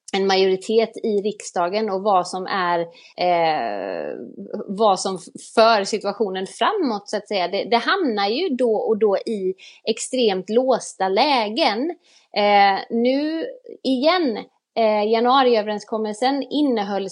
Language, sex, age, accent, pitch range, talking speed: Swedish, female, 30-49, native, 190-240 Hz, 120 wpm